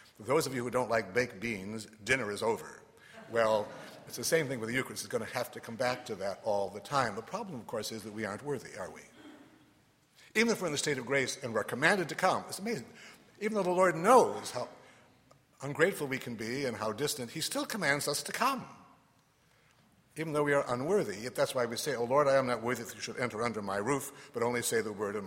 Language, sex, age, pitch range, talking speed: English, male, 60-79, 110-140 Hz, 250 wpm